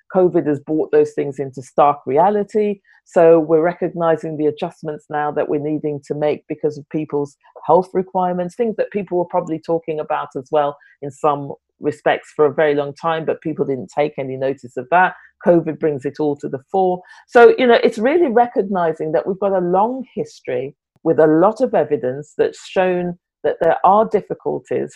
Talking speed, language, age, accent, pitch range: 190 wpm, English, 40-59, British, 150-195 Hz